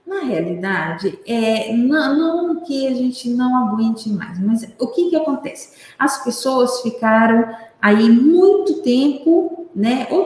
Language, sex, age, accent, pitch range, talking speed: Portuguese, female, 50-69, Brazilian, 205-275 Hz, 135 wpm